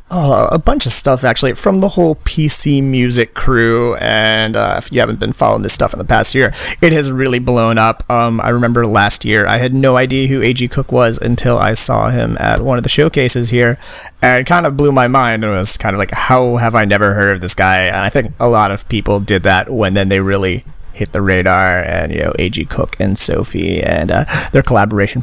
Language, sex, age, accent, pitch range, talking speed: English, male, 30-49, American, 100-130 Hz, 240 wpm